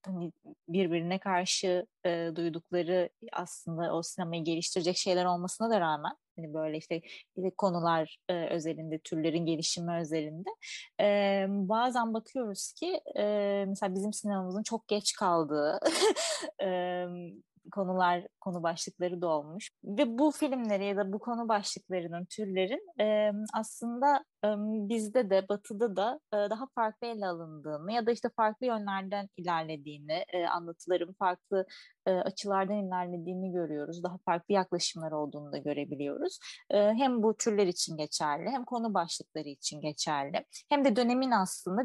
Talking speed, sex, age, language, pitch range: 125 wpm, female, 20-39, Turkish, 170-240 Hz